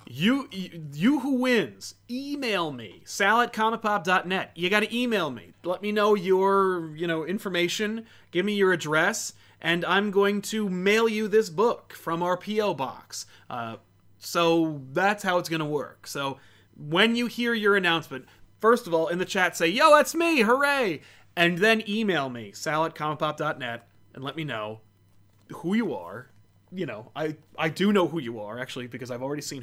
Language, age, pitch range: English, 30-49, 120-200 Hz